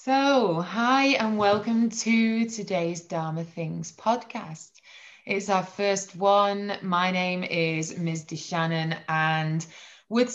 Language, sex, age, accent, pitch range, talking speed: English, female, 20-39, British, 165-205 Hz, 115 wpm